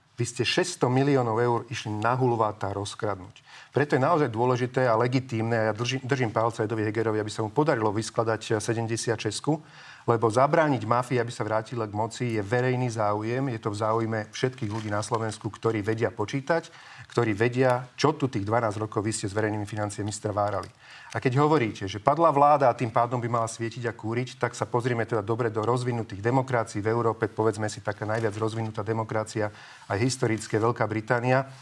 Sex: male